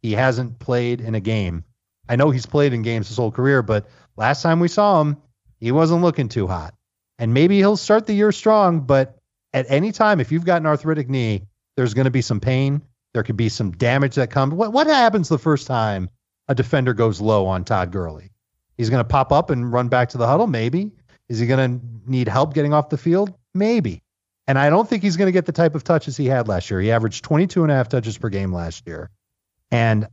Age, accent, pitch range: 40-59, American, 110-145 Hz